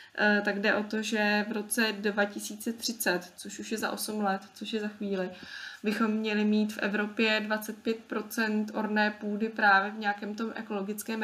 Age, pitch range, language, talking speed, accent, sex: 20-39, 200-220 Hz, Czech, 165 wpm, native, female